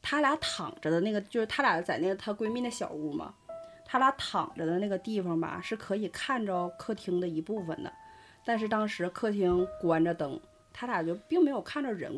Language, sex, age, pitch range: Chinese, female, 20-39, 170-255 Hz